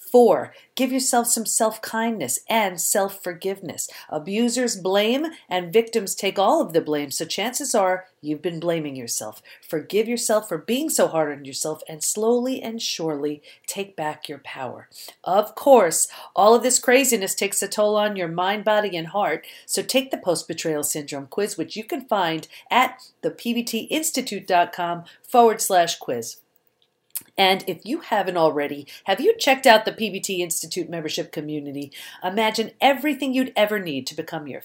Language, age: English, 40-59